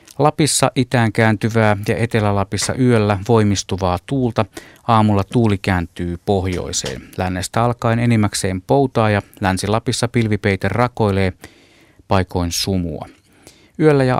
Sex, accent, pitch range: male, native, 95-110 Hz